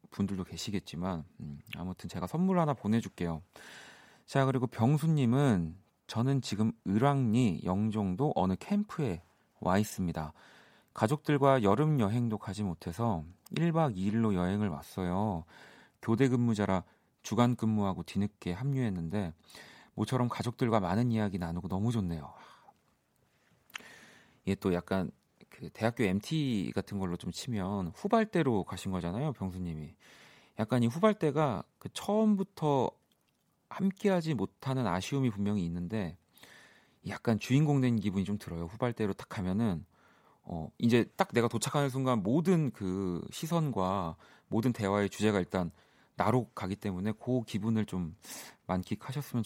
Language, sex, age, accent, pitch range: Korean, male, 40-59, native, 95-130 Hz